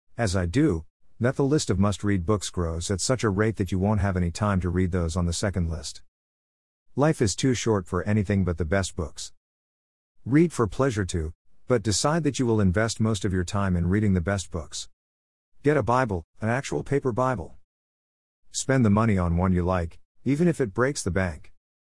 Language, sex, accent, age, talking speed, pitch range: English, male, American, 50-69, 210 wpm, 85-115 Hz